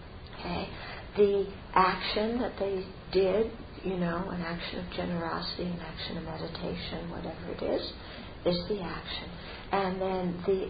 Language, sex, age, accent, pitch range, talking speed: English, male, 50-69, American, 175-200 Hz, 135 wpm